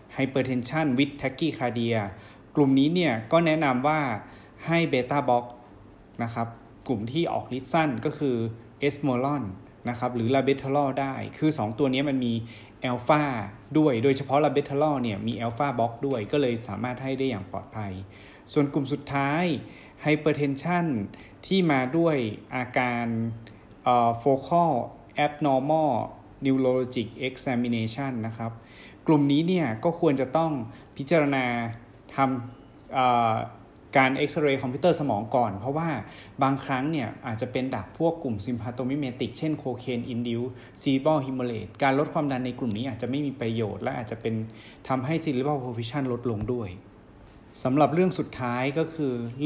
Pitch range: 115-145 Hz